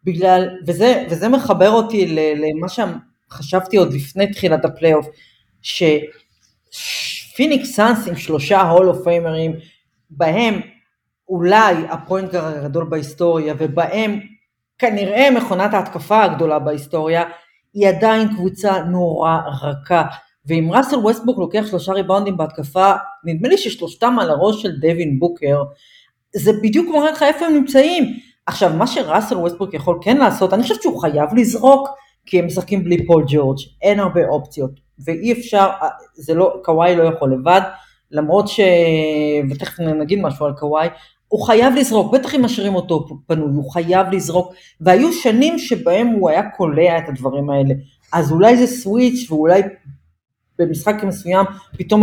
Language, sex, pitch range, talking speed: Hebrew, female, 155-210 Hz, 135 wpm